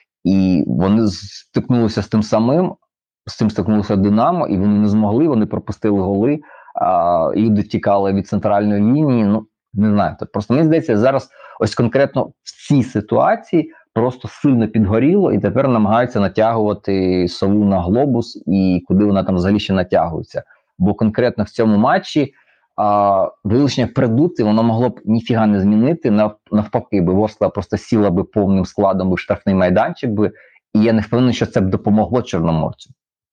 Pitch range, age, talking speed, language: 100-115 Hz, 30-49, 155 wpm, Ukrainian